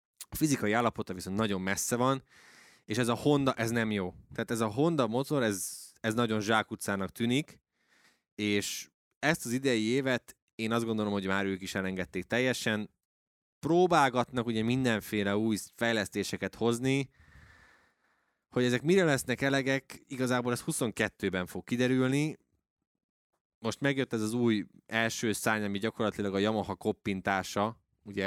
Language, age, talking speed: Hungarian, 20-39, 140 wpm